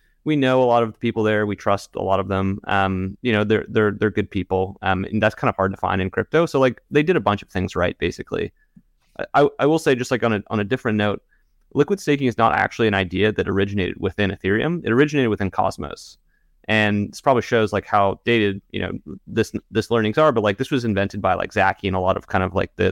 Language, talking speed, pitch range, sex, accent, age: English, 255 wpm, 95-115 Hz, male, American, 30-49